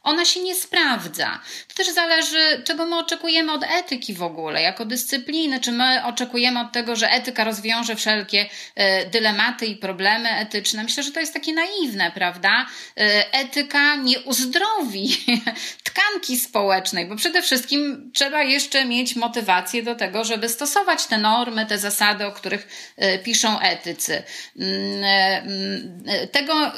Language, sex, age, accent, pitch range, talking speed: Polish, female, 30-49, native, 215-290 Hz, 140 wpm